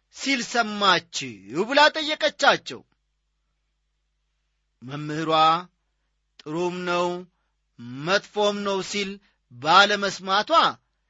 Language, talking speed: Amharic, 60 wpm